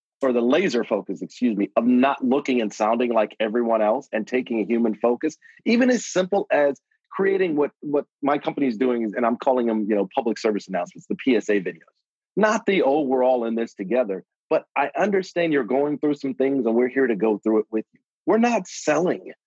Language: English